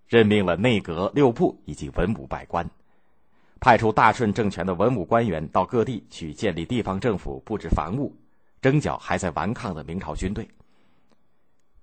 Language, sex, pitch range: Chinese, male, 95-135 Hz